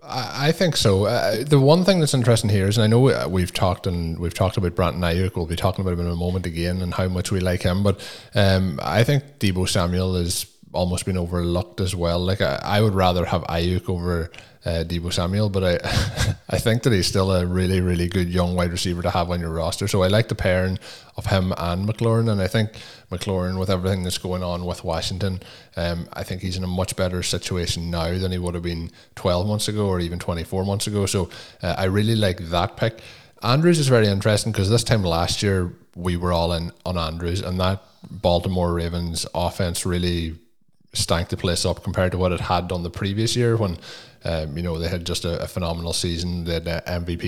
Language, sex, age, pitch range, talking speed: English, male, 20-39, 85-105 Hz, 225 wpm